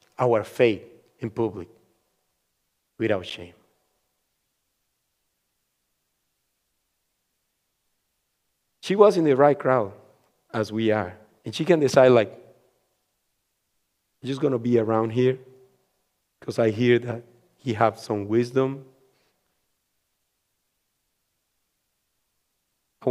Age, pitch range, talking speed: 50-69, 120-175 Hz, 90 wpm